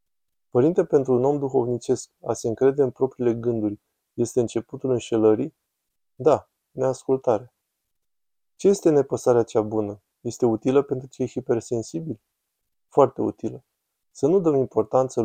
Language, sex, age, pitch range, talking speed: Romanian, male, 20-39, 115-130 Hz, 125 wpm